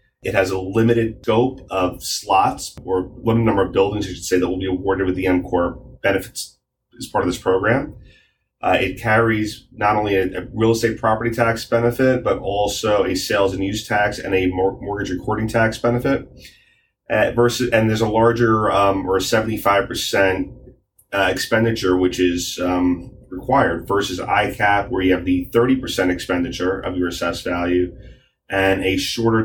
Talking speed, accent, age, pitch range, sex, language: 175 wpm, American, 30-49, 90-115 Hz, male, English